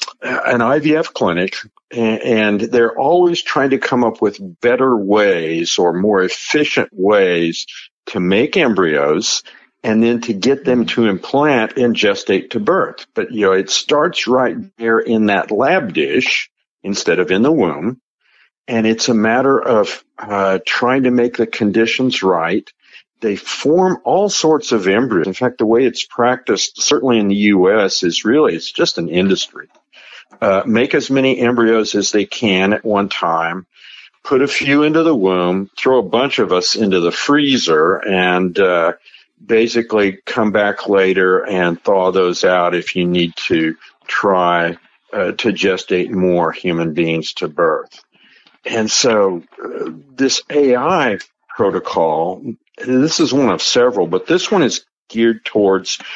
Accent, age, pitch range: American, 50-69, 95-125 Hz